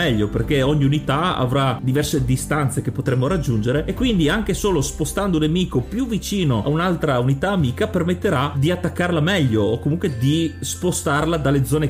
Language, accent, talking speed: Italian, native, 165 wpm